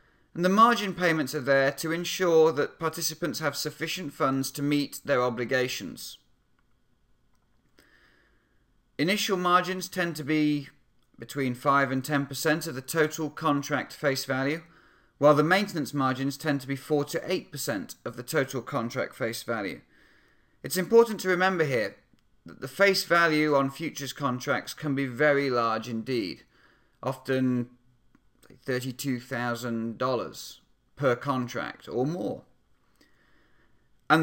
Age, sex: 40-59, male